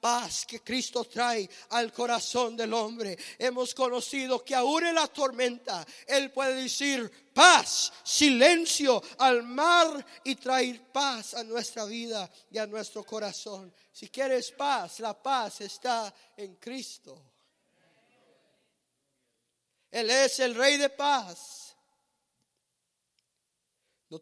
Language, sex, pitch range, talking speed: English, male, 235-270 Hz, 115 wpm